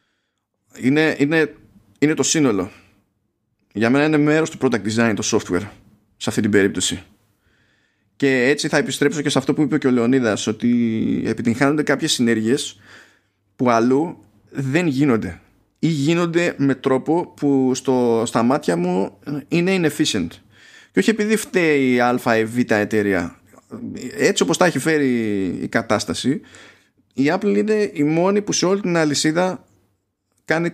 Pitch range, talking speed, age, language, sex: 110-155 Hz, 145 wpm, 20-39, Greek, male